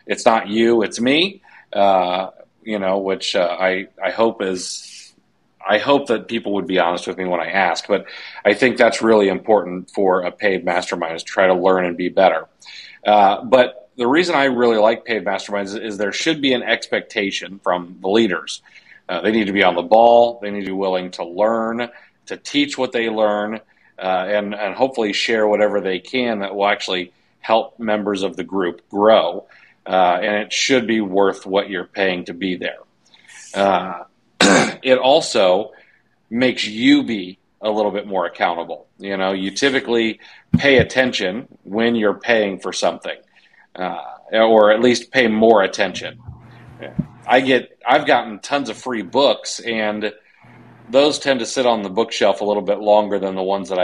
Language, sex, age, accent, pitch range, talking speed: English, male, 40-59, American, 95-115 Hz, 185 wpm